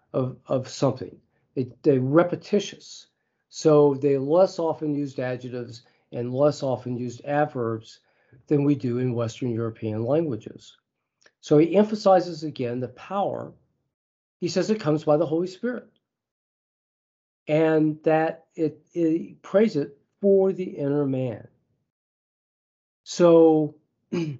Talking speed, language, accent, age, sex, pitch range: 120 wpm, English, American, 40-59, male, 125-165 Hz